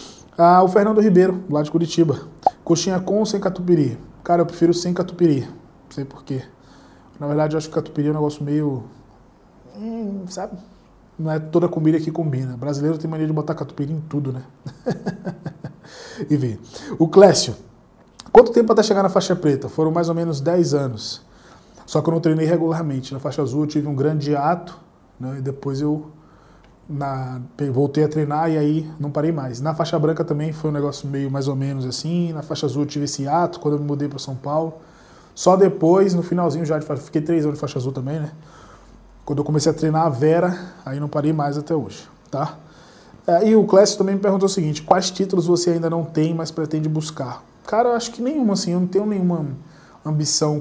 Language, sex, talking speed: Portuguese, male, 205 wpm